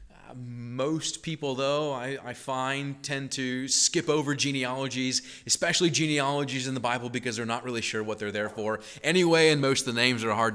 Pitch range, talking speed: 100-135 Hz, 190 wpm